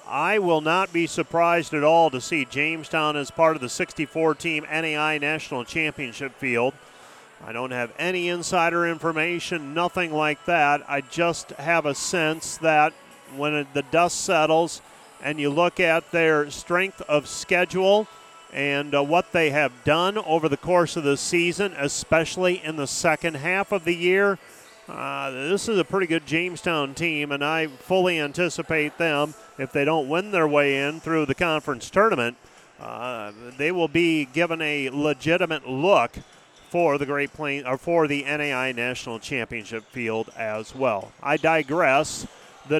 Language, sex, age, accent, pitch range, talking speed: English, male, 40-59, American, 145-180 Hz, 160 wpm